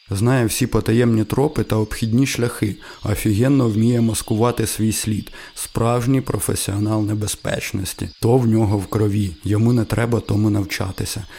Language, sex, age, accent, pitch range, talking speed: Ukrainian, male, 20-39, native, 105-120 Hz, 130 wpm